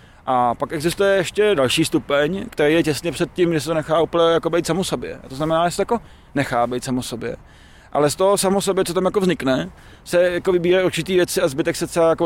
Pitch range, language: 135-165 Hz, Czech